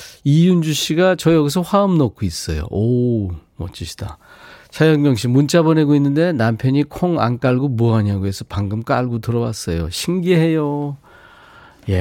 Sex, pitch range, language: male, 95-150 Hz, Korean